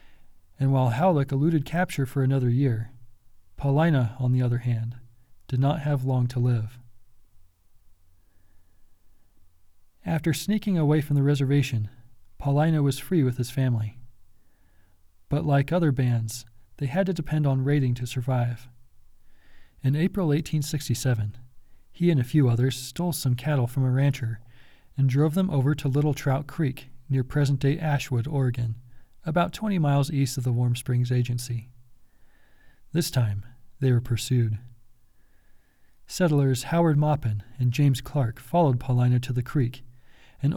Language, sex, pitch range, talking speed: English, male, 120-145 Hz, 140 wpm